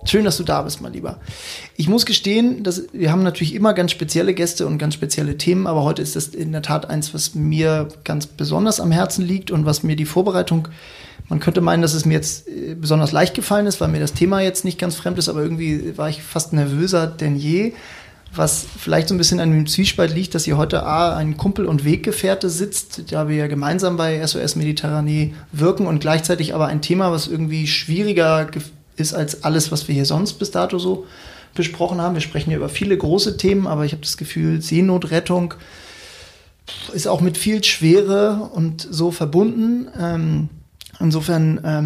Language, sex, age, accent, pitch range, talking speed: German, male, 30-49, German, 155-180 Hz, 200 wpm